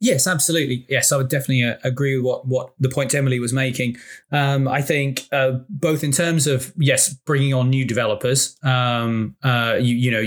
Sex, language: male, English